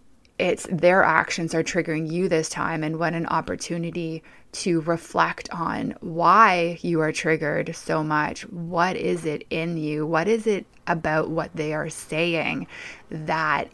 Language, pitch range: English, 160-180 Hz